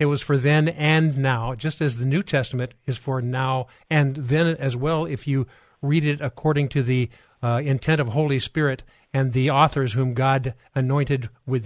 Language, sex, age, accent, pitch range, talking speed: English, male, 50-69, American, 130-150 Hz, 190 wpm